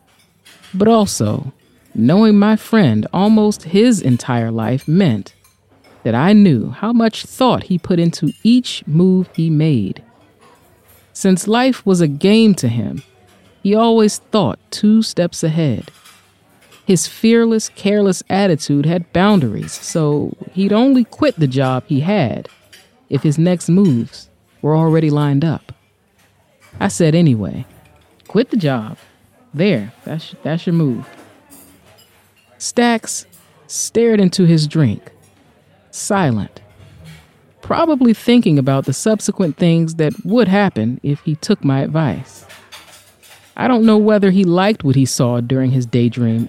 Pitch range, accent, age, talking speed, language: 130-205 Hz, American, 30-49, 130 wpm, English